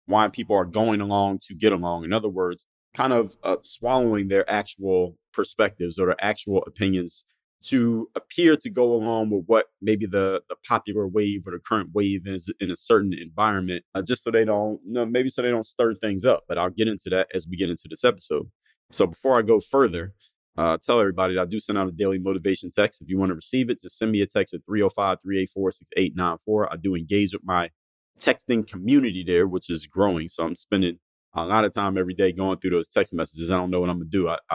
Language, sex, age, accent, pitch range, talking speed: English, male, 20-39, American, 90-105 Hz, 230 wpm